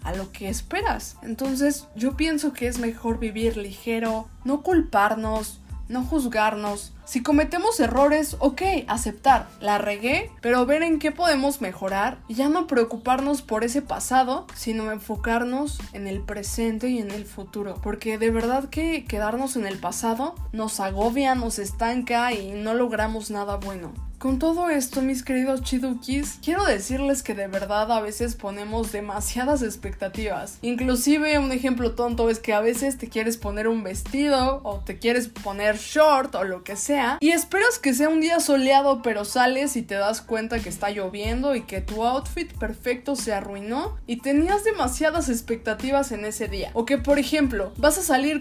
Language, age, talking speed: Spanish, 20-39, 170 wpm